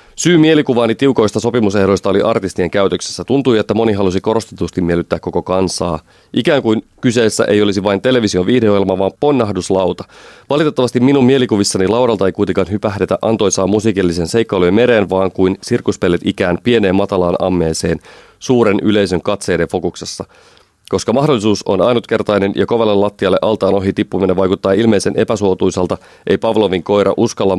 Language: Finnish